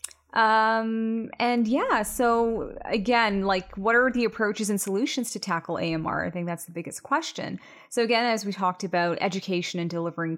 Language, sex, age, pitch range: English, female, 20-39, 170-220 Hz